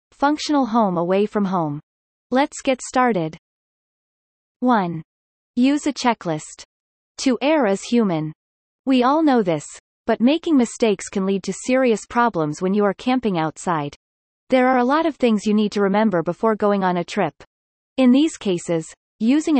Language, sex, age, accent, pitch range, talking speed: English, female, 30-49, American, 185-255 Hz, 160 wpm